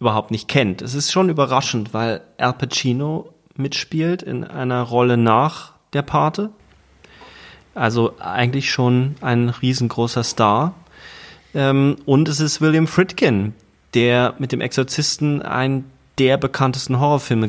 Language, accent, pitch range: German, German, 115-145 Hz